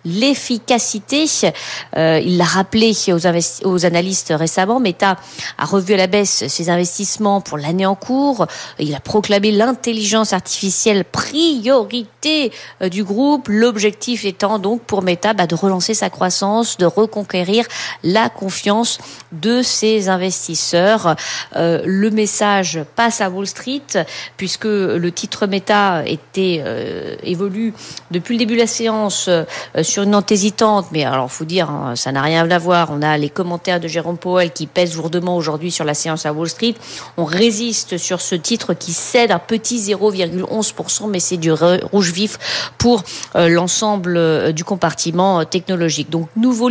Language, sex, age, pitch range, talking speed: French, female, 40-59, 170-220 Hz, 160 wpm